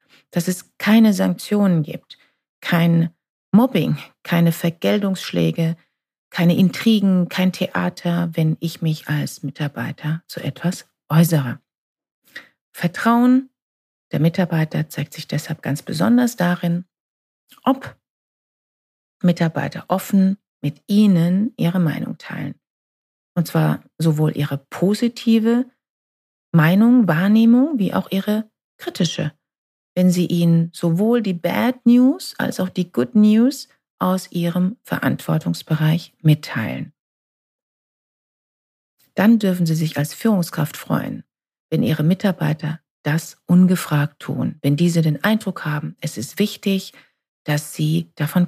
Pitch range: 155-195 Hz